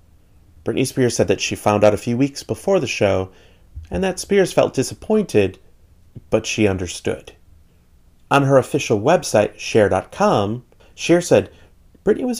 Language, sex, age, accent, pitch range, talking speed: English, male, 30-49, American, 95-140 Hz, 145 wpm